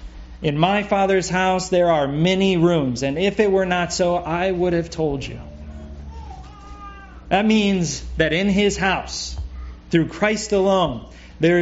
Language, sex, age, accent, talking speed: English, male, 30-49, American, 150 wpm